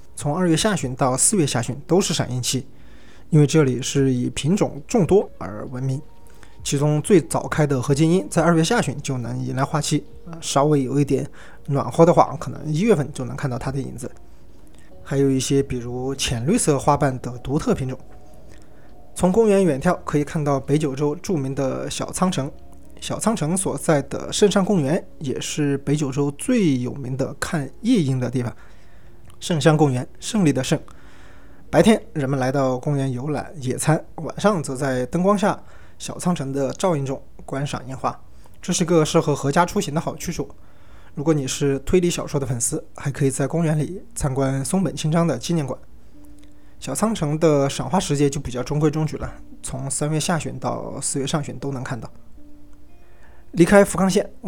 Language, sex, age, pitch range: Chinese, male, 20-39, 130-165 Hz